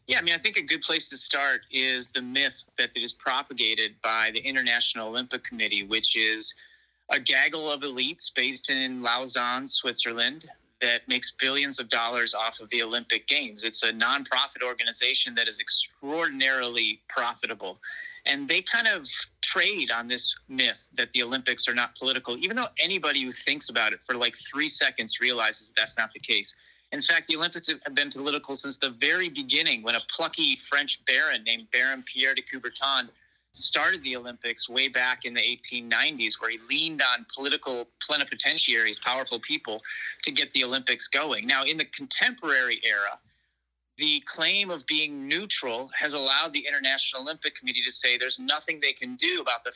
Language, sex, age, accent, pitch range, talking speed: English, male, 30-49, American, 120-145 Hz, 175 wpm